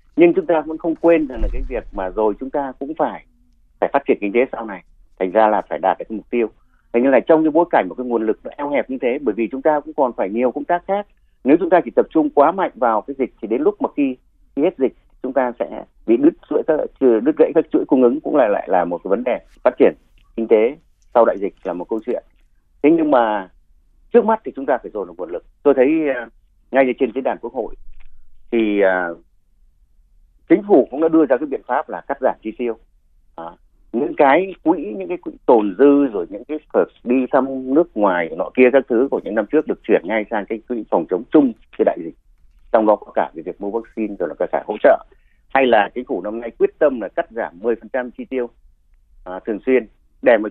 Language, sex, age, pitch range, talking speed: Vietnamese, male, 30-49, 100-155 Hz, 255 wpm